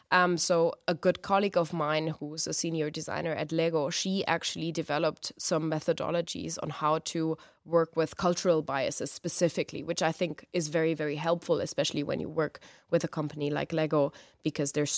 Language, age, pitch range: English, 20-39, 150-170 Hz